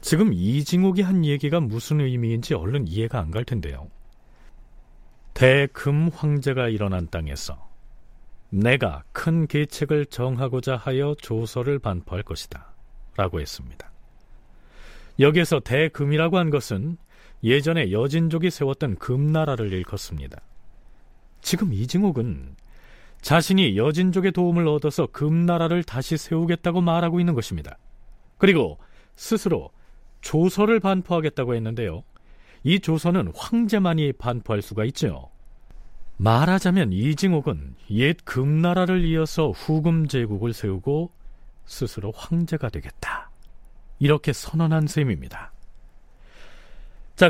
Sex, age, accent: male, 40-59, native